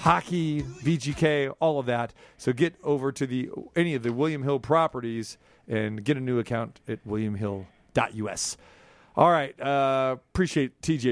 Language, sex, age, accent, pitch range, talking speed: English, male, 40-59, American, 115-140 Hz, 150 wpm